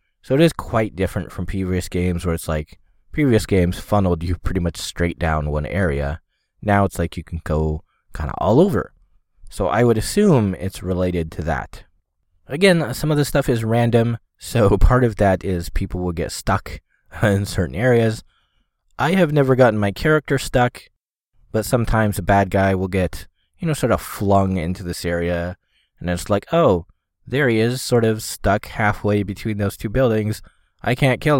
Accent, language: American, English